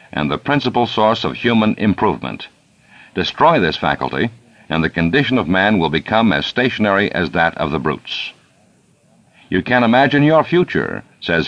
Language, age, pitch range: English, 60-79, 85-120 Hz